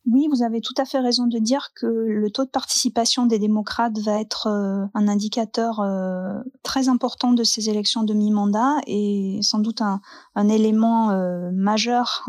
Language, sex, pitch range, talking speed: French, female, 210-240 Hz, 165 wpm